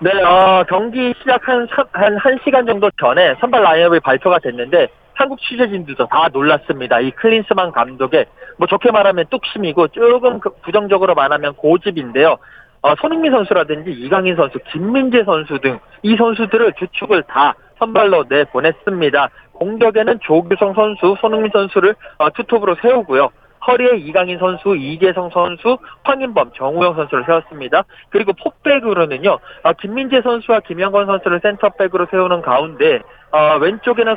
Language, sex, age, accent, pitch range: Korean, male, 40-59, native, 175-240 Hz